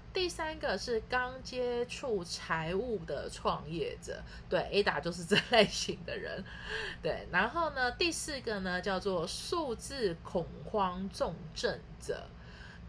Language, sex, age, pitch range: Chinese, female, 30-49, 170-250 Hz